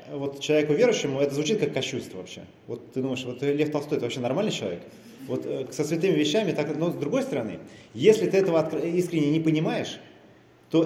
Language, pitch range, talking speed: Russian, 140-190 Hz, 190 wpm